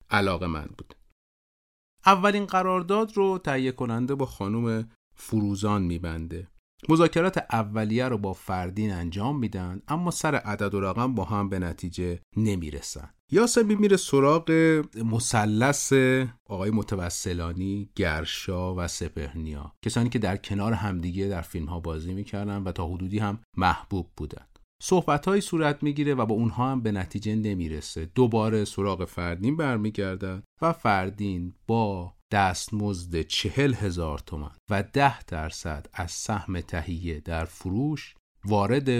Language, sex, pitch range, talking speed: Persian, male, 90-125 Hz, 130 wpm